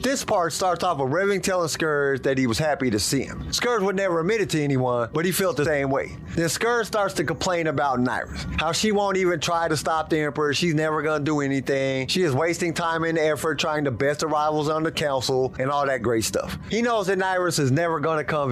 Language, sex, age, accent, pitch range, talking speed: English, male, 30-49, American, 145-195 Hz, 245 wpm